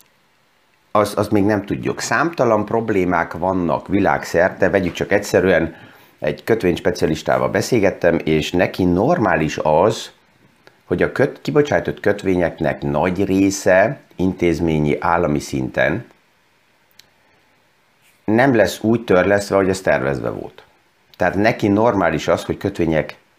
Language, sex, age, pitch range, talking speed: Hungarian, male, 50-69, 85-105 Hz, 110 wpm